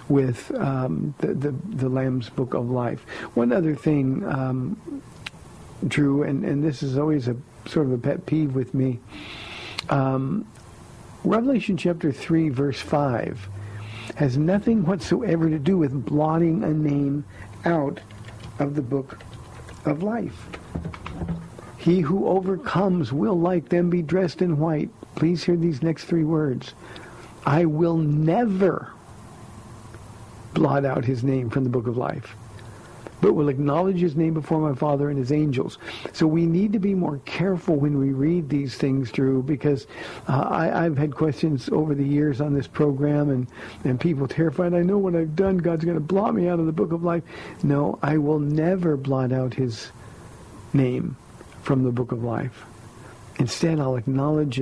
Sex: male